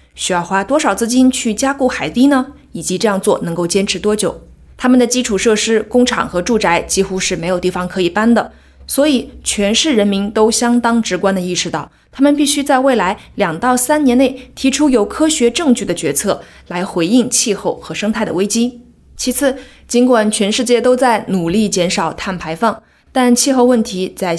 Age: 20-39